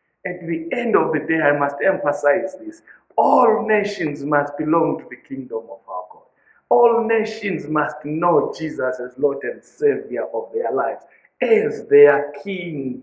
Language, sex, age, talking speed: English, male, 50-69, 160 wpm